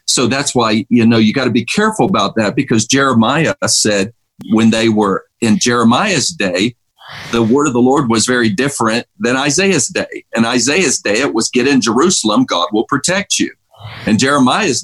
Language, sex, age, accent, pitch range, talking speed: English, male, 50-69, American, 110-140 Hz, 185 wpm